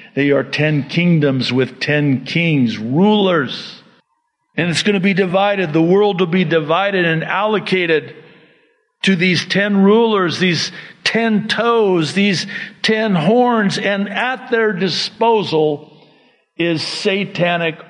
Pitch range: 165-230 Hz